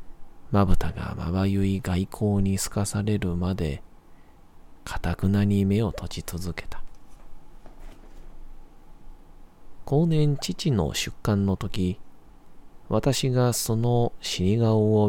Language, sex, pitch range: Japanese, male, 85-105 Hz